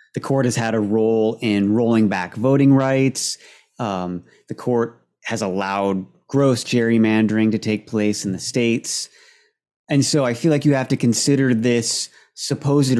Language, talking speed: English, 160 wpm